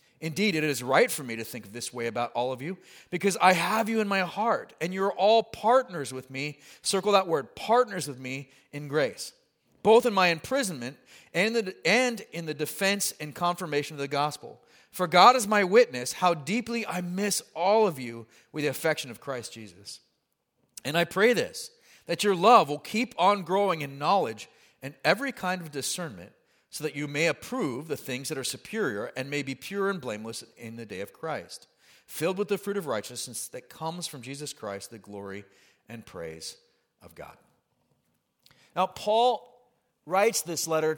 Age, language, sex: 40-59, English, male